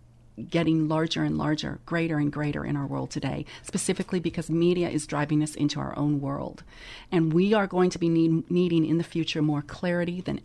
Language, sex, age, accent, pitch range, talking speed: English, female, 40-59, American, 155-195 Hz, 195 wpm